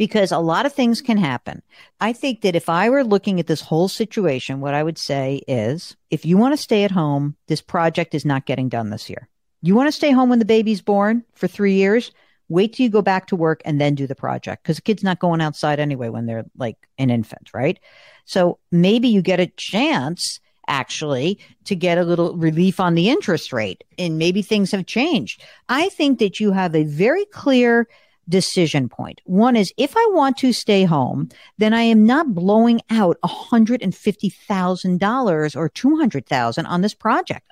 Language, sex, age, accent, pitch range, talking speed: English, female, 50-69, American, 155-230 Hz, 200 wpm